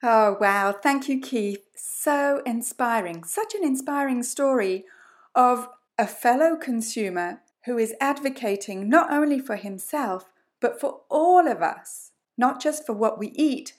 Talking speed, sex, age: 145 wpm, female, 40-59